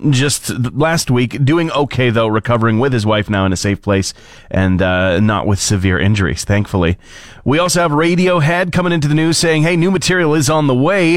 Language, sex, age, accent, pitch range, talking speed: English, male, 30-49, American, 110-145 Hz, 205 wpm